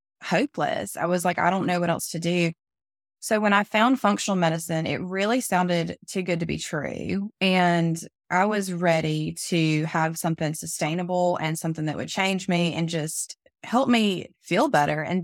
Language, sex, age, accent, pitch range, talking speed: English, female, 20-39, American, 165-190 Hz, 180 wpm